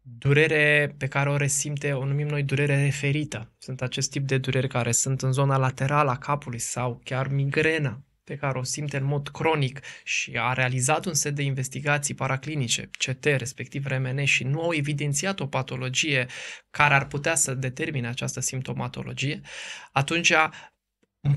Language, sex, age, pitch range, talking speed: Romanian, male, 20-39, 130-150 Hz, 165 wpm